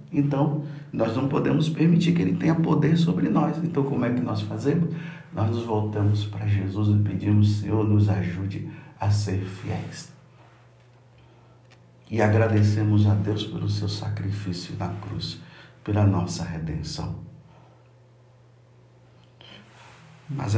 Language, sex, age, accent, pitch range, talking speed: Portuguese, male, 50-69, Brazilian, 105-130 Hz, 125 wpm